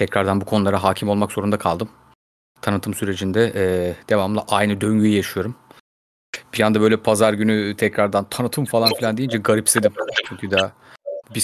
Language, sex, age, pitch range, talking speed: Turkish, male, 30-49, 105-130 Hz, 140 wpm